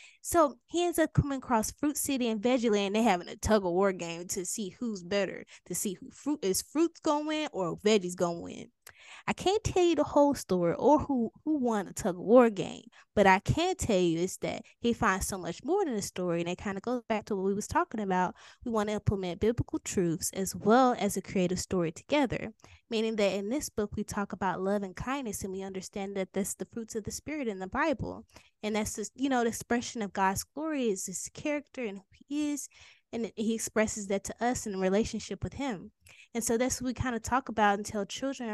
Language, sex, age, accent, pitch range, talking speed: English, female, 10-29, American, 200-255 Hz, 240 wpm